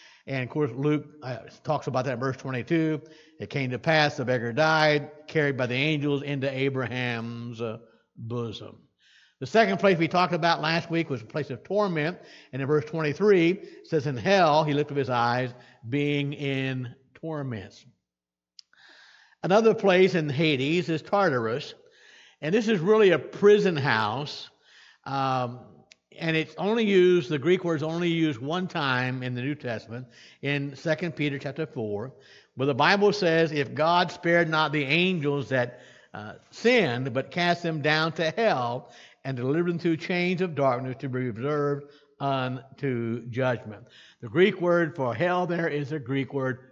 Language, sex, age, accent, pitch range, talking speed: English, male, 60-79, American, 130-165 Hz, 170 wpm